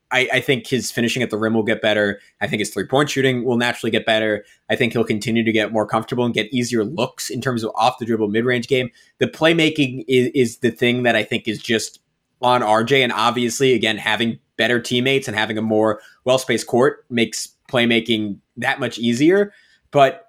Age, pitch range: 20-39, 110-130 Hz